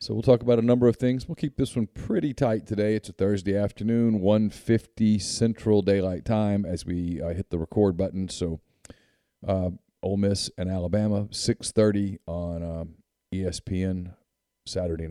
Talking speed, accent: 165 wpm, American